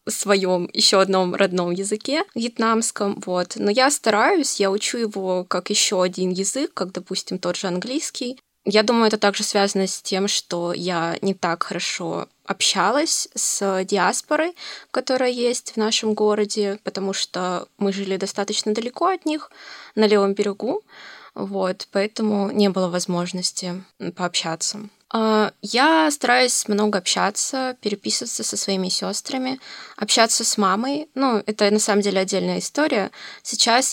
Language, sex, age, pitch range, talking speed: Russian, female, 20-39, 185-235 Hz, 140 wpm